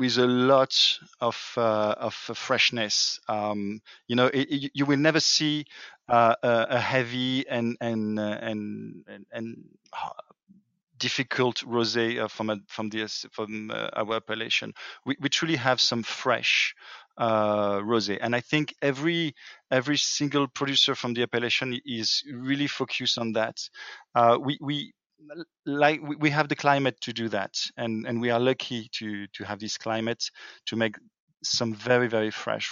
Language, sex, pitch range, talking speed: English, male, 115-140 Hz, 150 wpm